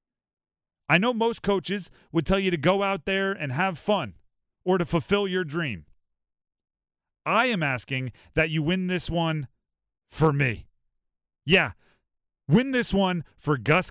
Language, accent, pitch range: English, American, 135-200 Hz